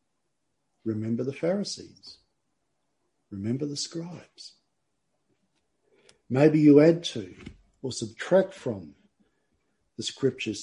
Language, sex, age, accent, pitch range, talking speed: English, male, 50-69, Australian, 120-150 Hz, 85 wpm